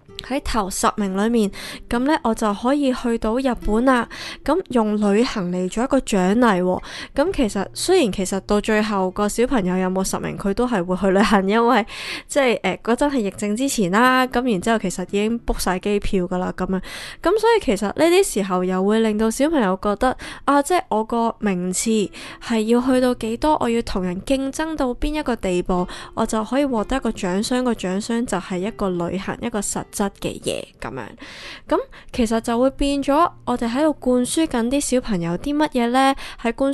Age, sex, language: 20-39, female, Chinese